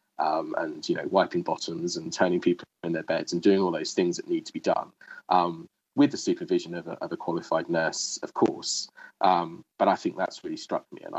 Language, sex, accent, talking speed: English, male, British, 230 wpm